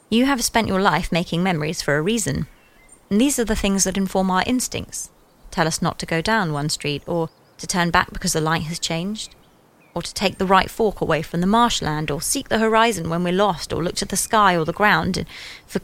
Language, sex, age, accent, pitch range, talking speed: English, female, 20-39, British, 165-215 Hz, 235 wpm